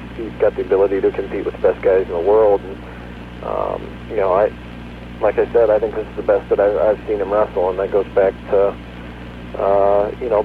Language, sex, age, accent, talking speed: English, male, 50-69, American, 235 wpm